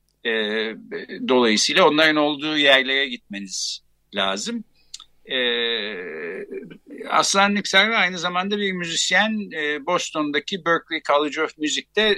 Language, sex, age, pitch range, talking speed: Turkish, male, 60-79, 125-195 Hz, 100 wpm